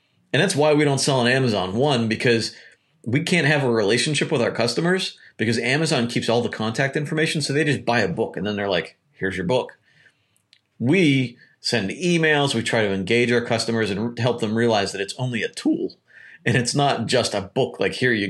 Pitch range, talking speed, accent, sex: 105-140 Hz, 215 wpm, American, male